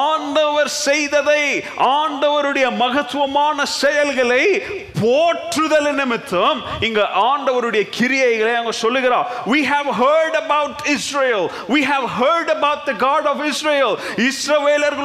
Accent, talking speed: native, 85 wpm